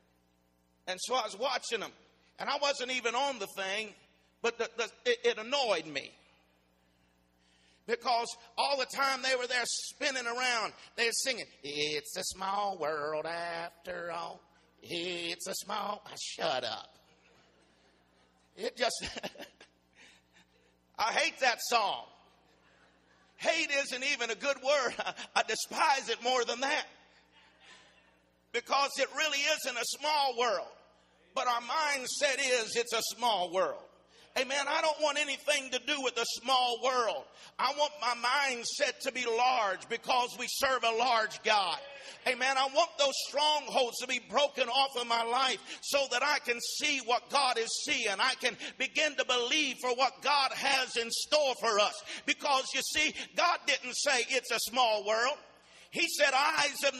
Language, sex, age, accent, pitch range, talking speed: English, male, 50-69, American, 215-280 Hz, 155 wpm